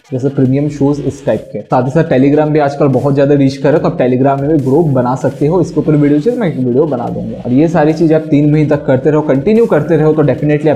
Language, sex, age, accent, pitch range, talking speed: Hindi, male, 20-39, native, 135-165 Hz, 275 wpm